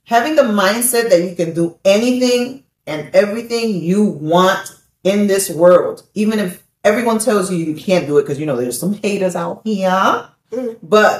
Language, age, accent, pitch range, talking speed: English, 40-59, American, 165-210 Hz, 175 wpm